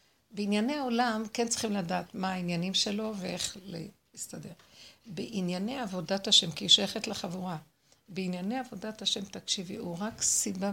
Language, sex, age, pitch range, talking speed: Hebrew, female, 60-79, 175-220 Hz, 135 wpm